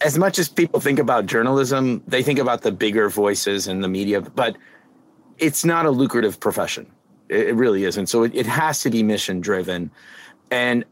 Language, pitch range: English, 115-160 Hz